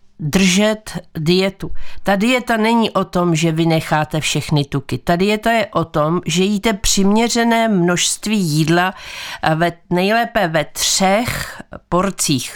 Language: Czech